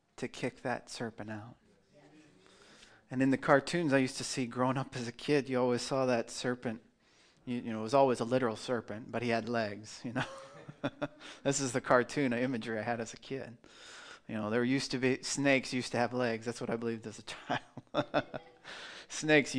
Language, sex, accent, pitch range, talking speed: English, male, American, 115-135 Hz, 210 wpm